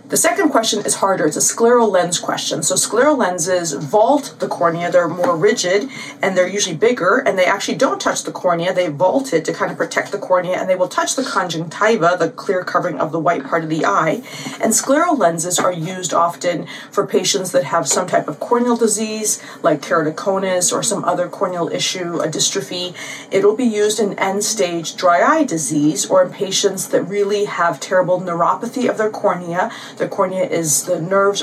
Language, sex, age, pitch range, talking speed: English, female, 30-49, 175-215 Hz, 200 wpm